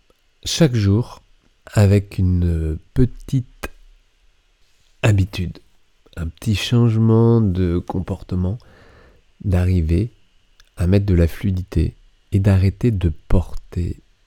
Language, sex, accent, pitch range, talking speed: French, male, French, 90-110 Hz, 90 wpm